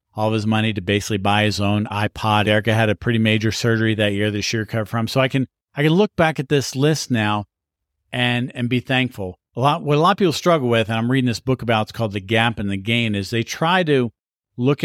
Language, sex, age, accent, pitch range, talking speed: English, male, 50-69, American, 110-135 Hz, 260 wpm